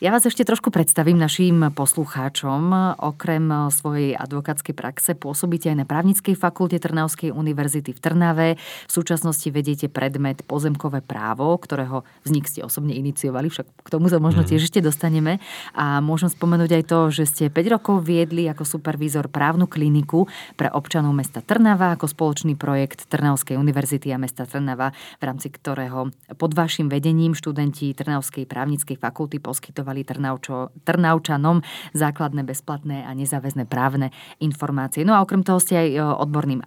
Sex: female